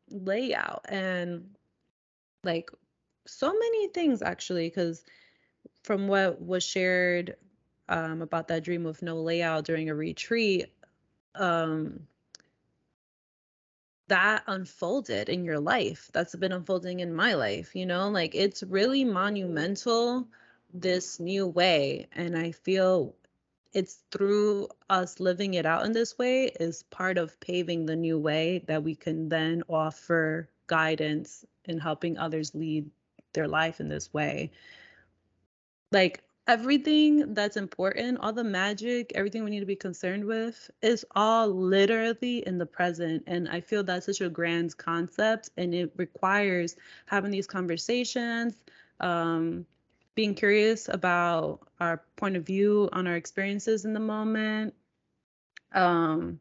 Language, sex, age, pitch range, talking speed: English, female, 20-39, 165-210 Hz, 135 wpm